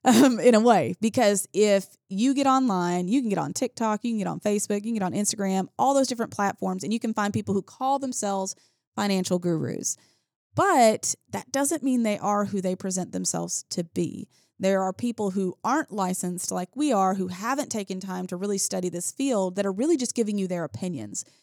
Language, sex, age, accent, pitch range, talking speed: English, female, 30-49, American, 185-230 Hz, 215 wpm